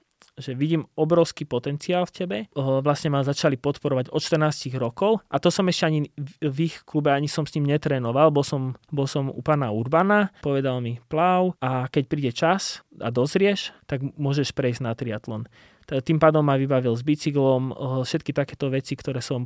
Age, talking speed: 20-39, 180 wpm